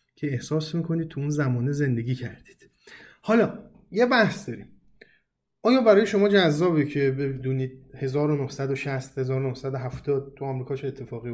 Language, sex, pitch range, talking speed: Persian, male, 140-190 Hz, 125 wpm